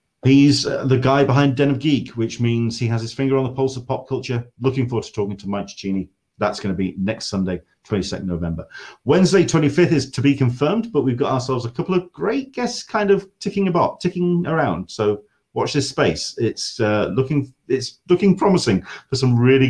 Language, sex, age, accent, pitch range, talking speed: English, male, 40-59, British, 95-135 Hz, 205 wpm